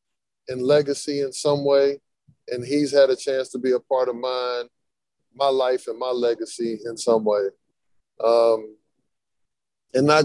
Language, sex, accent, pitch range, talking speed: English, male, American, 120-145 Hz, 160 wpm